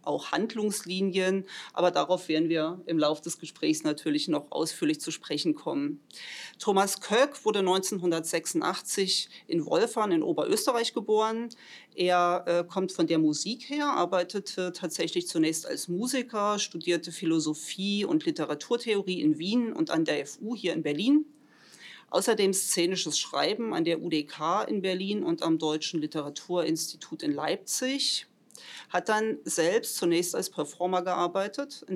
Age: 40-59